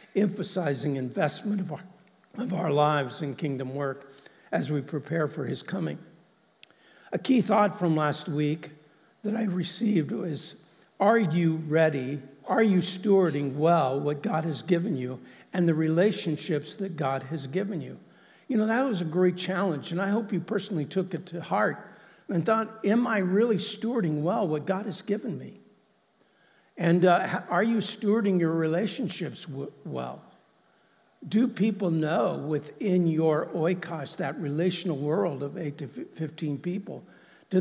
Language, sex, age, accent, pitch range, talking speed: English, male, 60-79, American, 155-200 Hz, 155 wpm